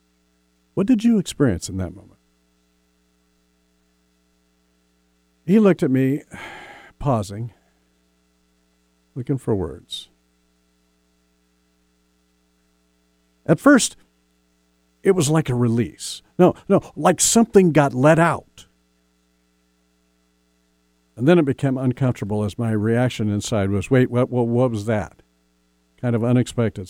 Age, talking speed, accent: 50-69, 105 wpm, American